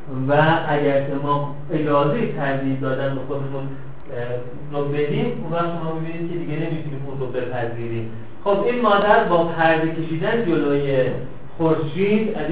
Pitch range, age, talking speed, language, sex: 145-185 Hz, 50-69, 130 wpm, Persian, male